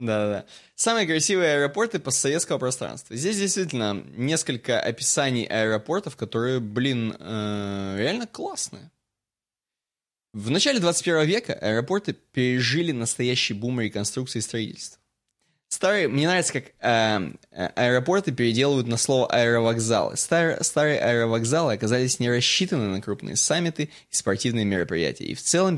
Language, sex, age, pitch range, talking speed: Russian, male, 20-39, 110-160 Hz, 125 wpm